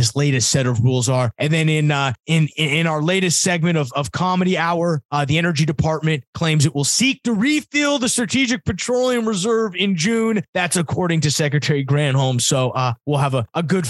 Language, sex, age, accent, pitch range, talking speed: English, male, 30-49, American, 115-145 Hz, 205 wpm